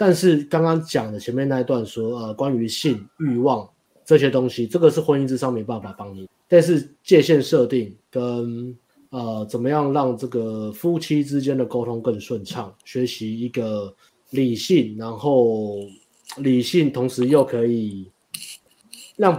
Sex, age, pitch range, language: male, 20-39, 105-130 Hz, Chinese